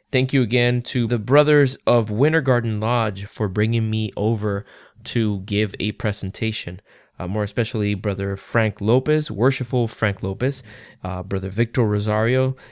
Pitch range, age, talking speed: 105-120 Hz, 20-39, 145 wpm